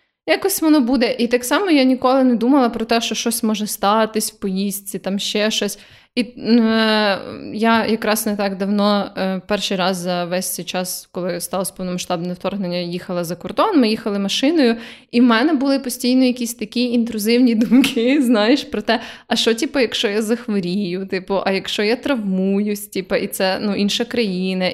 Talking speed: 165 wpm